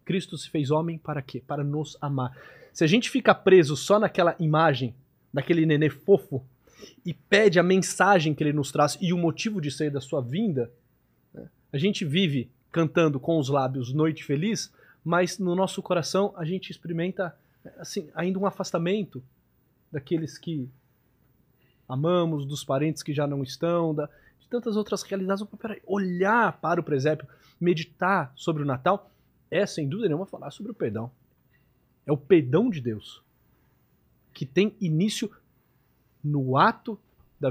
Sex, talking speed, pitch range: male, 160 wpm, 140-185 Hz